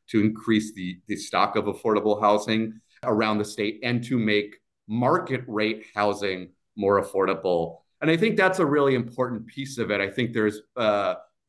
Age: 30-49